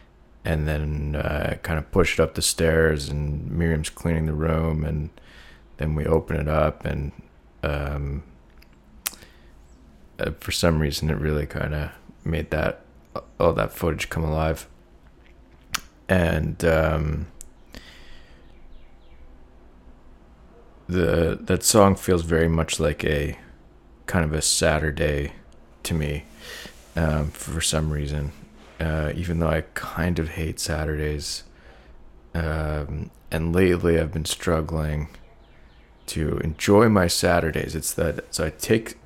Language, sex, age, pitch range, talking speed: English, male, 20-39, 75-85 Hz, 125 wpm